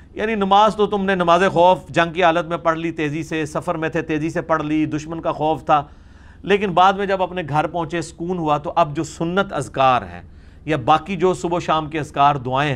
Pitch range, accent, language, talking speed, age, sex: 115-165 Hz, Indian, English, 235 wpm, 50-69, male